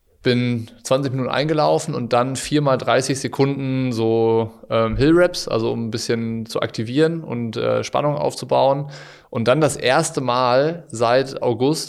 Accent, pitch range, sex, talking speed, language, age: German, 115-130 Hz, male, 150 wpm, German, 20-39